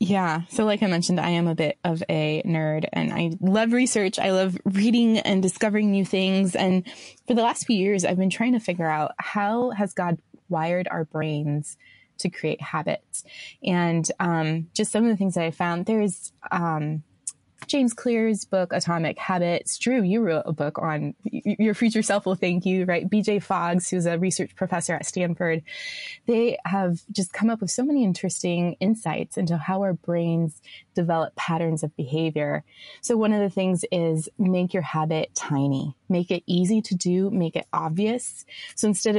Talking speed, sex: 185 wpm, female